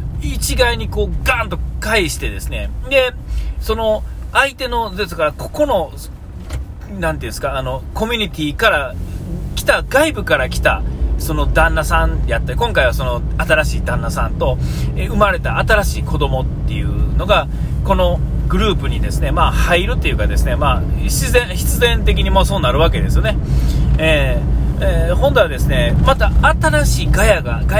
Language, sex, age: Japanese, male, 40-59